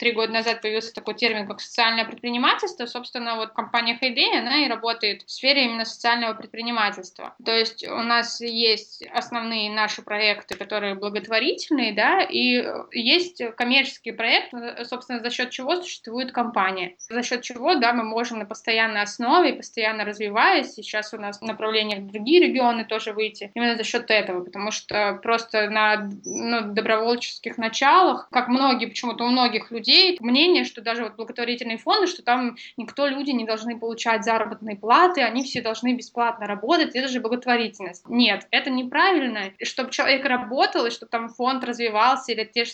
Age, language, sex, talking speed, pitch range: 20-39, Russian, female, 165 wpm, 220-250 Hz